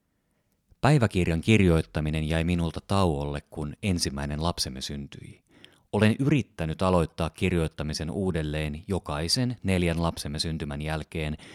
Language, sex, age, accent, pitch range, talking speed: Finnish, male, 30-49, native, 80-110 Hz, 100 wpm